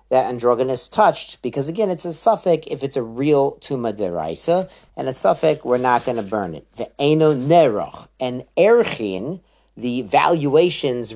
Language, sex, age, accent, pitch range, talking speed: English, male, 40-59, American, 120-160 Hz, 150 wpm